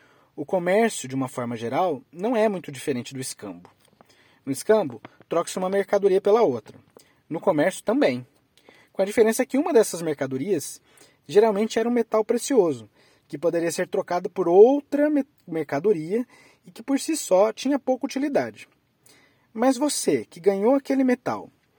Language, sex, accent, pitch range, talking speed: Portuguese, male, Brazilian, 145-220 Hz, 150 wpm